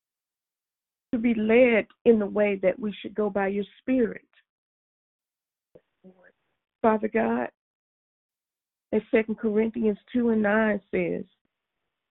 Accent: American